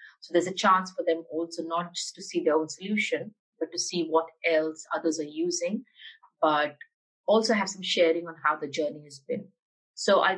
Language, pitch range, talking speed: English, 160-195 Hz, 200 wpm